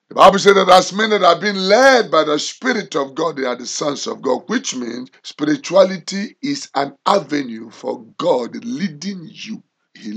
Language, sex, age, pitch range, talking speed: English, male, 50-69, 180-255 Hz, 190 wpm